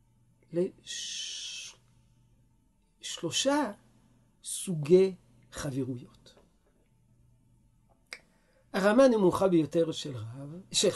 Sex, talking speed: male, 55 wpm